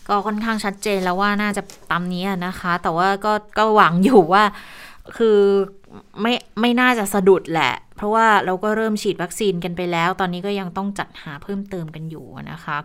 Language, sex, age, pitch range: Thai, female, 20-39, 180-210 Hz